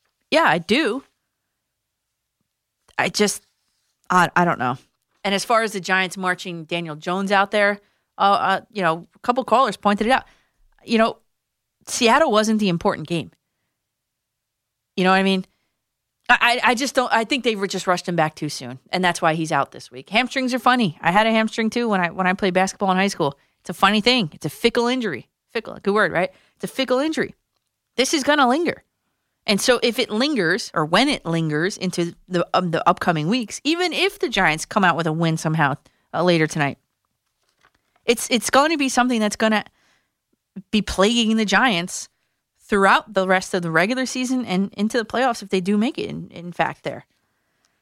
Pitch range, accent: 175-235 Hz, American